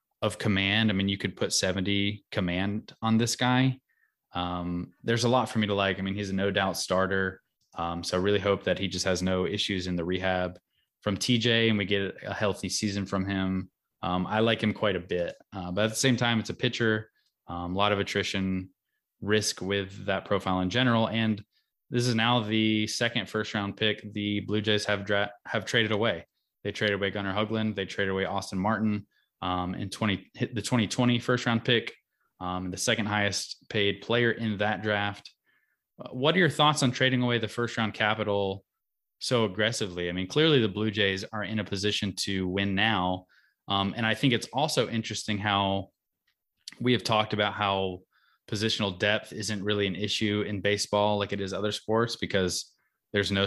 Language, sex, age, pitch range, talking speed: English, male, 20-39, 95-110 Hz, 200 wpm